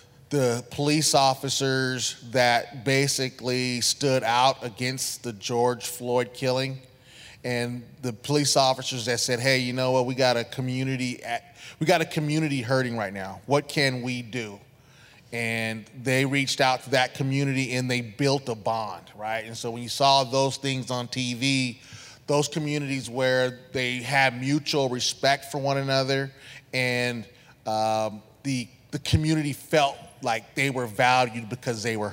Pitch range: 120-135 Hz